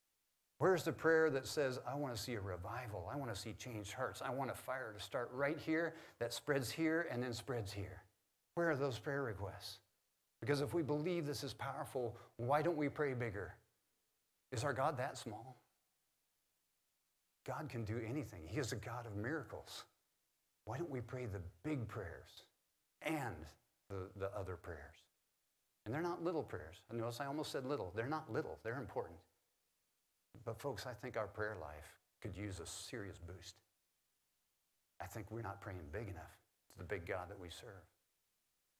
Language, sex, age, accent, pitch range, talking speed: English, male, 50-69, American, 95-130 Hz, 180 wpm